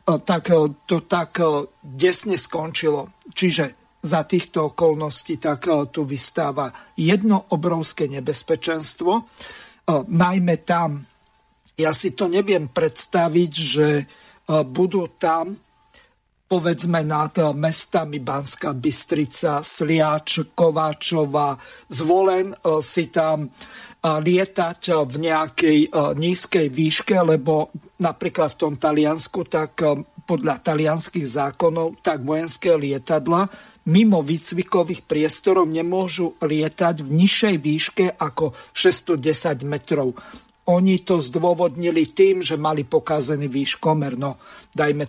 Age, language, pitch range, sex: 50-69, Slovak, 150-175 Hz, male